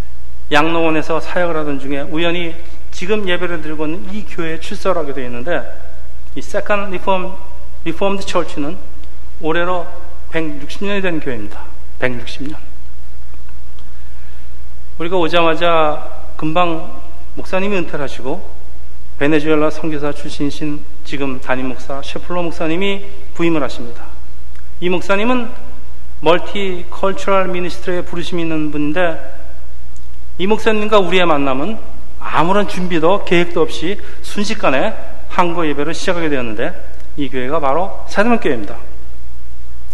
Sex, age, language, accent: male, 40-59, Korean, native